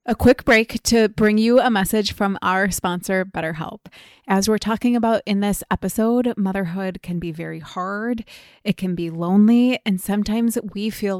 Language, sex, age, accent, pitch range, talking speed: English, female, 20-39, American, 185-220 Hz, 170 wpm